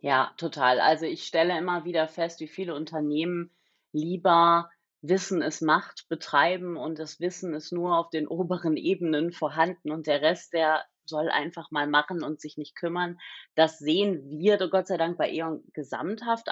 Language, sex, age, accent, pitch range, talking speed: German, female, 30-49, German, 155-200 Hz, 170 wpm